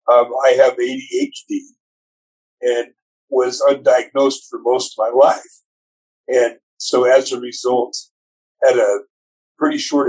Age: 50-69